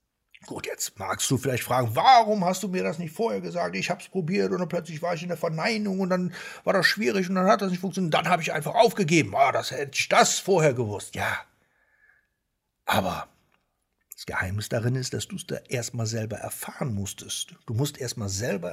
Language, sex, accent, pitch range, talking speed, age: German, male, German, 130-200 Hz, 220 wpm, 60-79